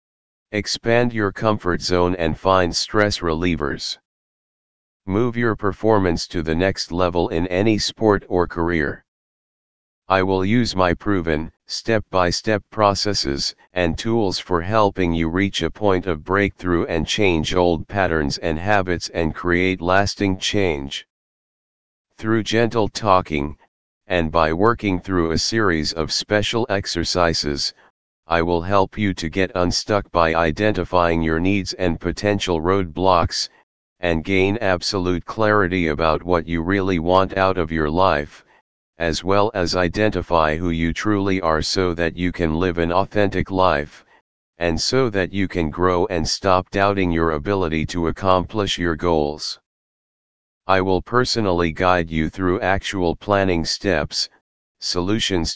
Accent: American